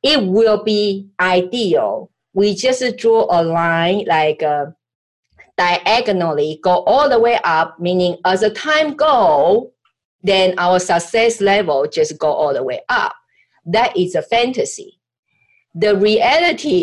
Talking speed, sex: 135 wpm, female